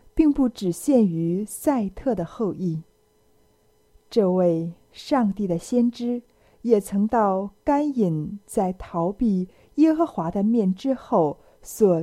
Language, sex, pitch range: Chinese, female, 175-235 Hz